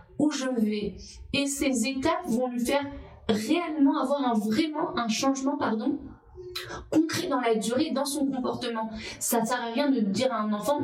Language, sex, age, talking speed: French, female, 30-49, 170 wpm